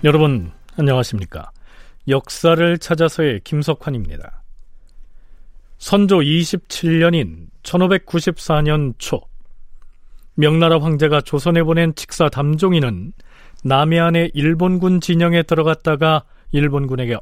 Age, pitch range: 40-59, 120-165 Hz